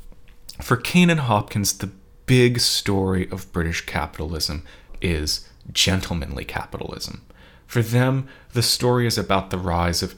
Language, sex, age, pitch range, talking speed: English, male, 30-49, 85-115 Hz, 130 wpm